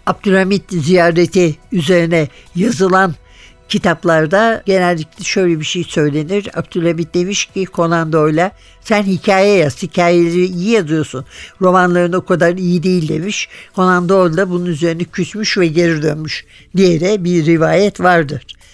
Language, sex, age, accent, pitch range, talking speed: Turkish, male, 60-79, native, 175-215 Hz, 125 wpm